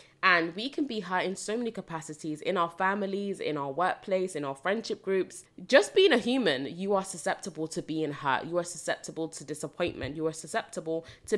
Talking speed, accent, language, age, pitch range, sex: 200 wpm, British, English, 20-39, 150-205 Hz, female